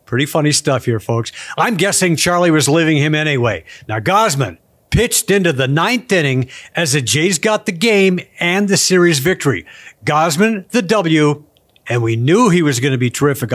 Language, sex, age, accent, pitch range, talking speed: English, male, 60-79, American, 145-205 Hz, 180 wpm